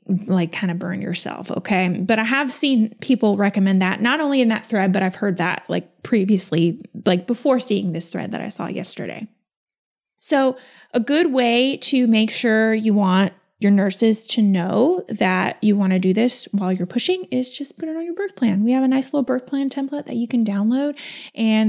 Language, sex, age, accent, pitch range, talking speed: English, female, 20-39, American, 200-270 Hz, 210 wpm